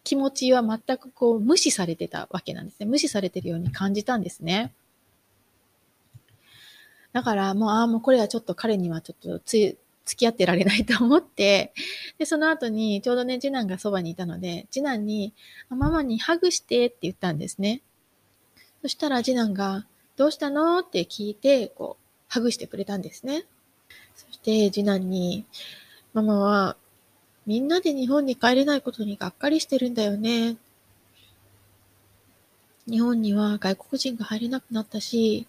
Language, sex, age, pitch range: Japanese, female, 20-39, 185-255 Hz